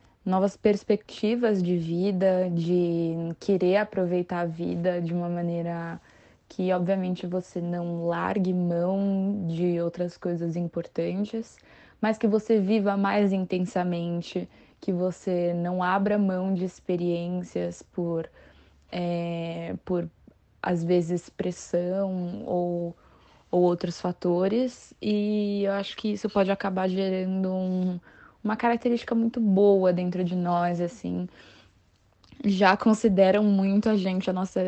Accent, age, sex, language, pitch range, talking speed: Brazilian, 20-39, female, Portuguese, 175-195 Hz, 120 wpm